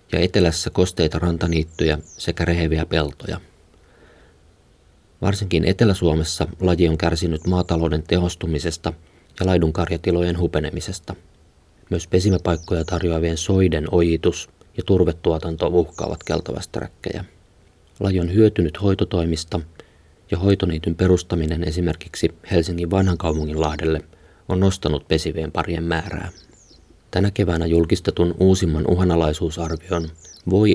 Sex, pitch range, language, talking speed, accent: male, 80-95 Hz, Finnish, 95 wpm, native